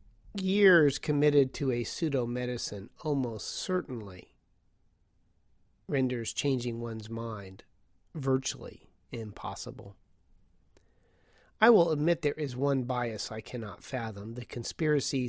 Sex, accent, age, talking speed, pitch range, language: male, American, 40-59, 100 wpm, 110-145 Hz, English